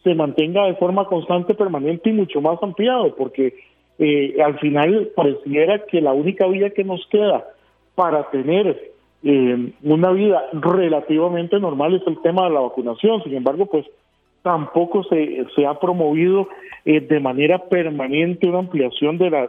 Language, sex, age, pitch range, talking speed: Spanish, male, 40-59, 140-185 Hz, 155 wpm